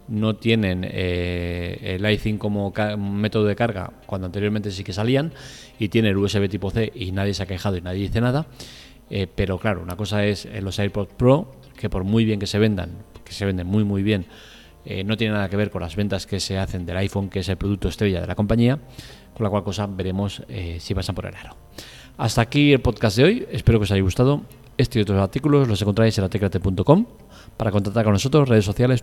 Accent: Spanish